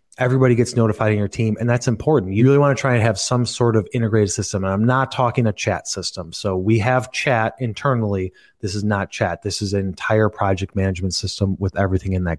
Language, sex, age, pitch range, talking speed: English, male, 30-49, 105-130 Hz, 230 wpm